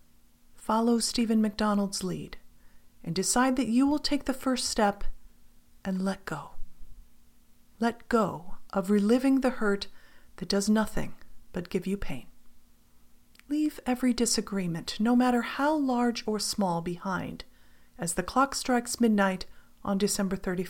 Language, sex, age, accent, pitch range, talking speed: English, female, 40-59, American, 180-240 Hz, 135 wpm